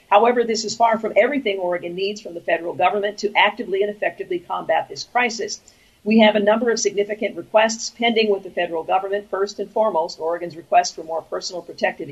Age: 50-69